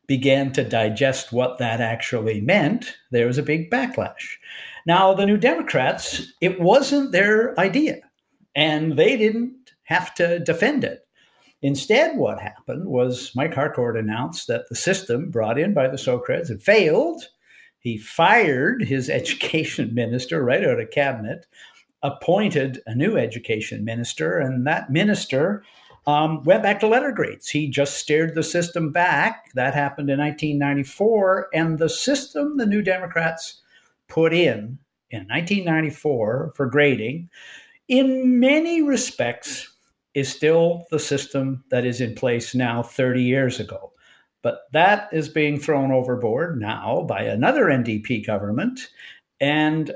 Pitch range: 130-195 Hz